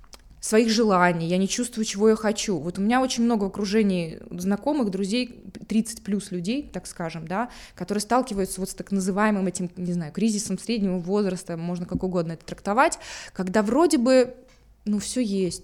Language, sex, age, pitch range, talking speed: Russian, female, 20-39, 190-245 Hz, 175 wpm